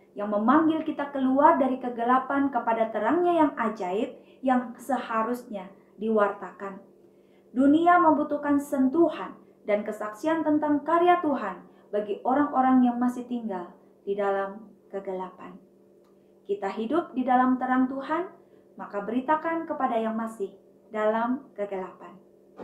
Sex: female